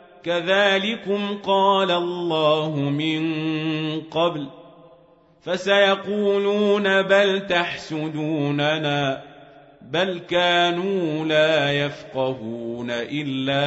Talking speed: 55 wpm